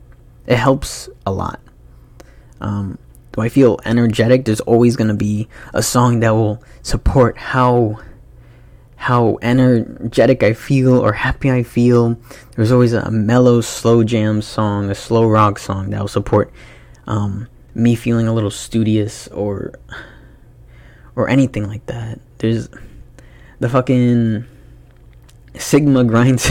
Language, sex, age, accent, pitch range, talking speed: English, male, 20-39, American, 105-125 Hz, 130 wpm